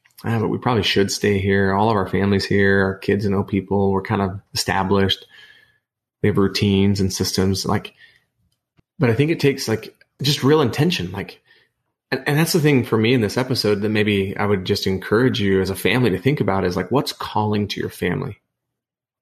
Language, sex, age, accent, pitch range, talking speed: English, male, 30-49, American, 95-120 Hz, 210 wpm